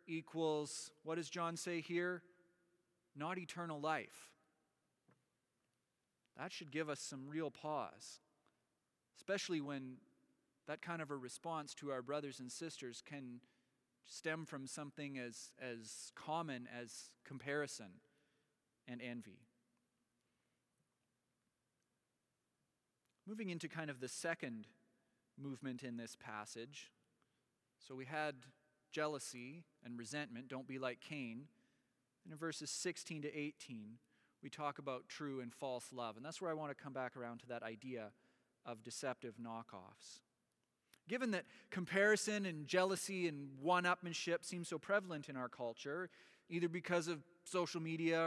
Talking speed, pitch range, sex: 130 wpm, 130-170 Hz, male